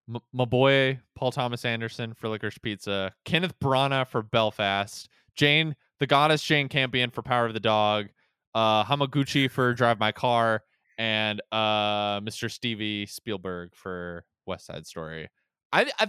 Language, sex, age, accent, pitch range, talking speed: English, male, 20-39, American, 110-145 Hz, 145 wpm